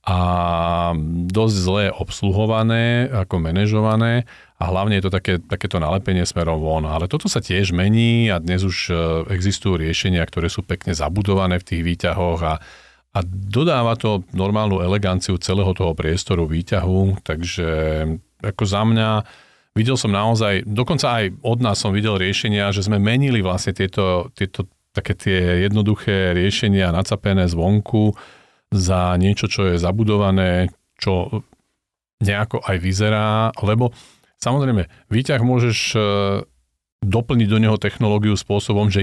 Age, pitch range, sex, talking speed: 40-59, 90-110 Hz, male, 130 wpm